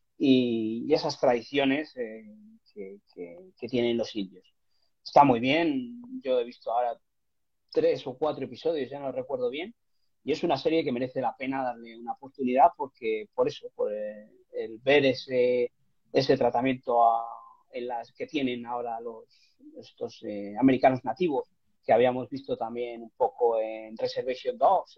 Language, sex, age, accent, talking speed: Spanish, male, 30-49, Spanish, 155 wpm